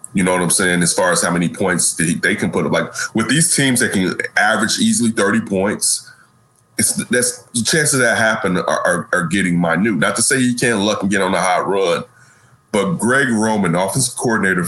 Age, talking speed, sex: 30-49, 220 wpm, male